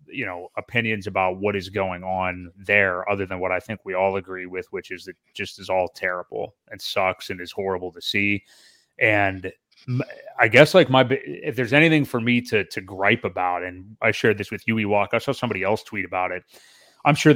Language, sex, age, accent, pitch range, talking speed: English, male, 30-49, American, 95-125 Hz, 220 wpm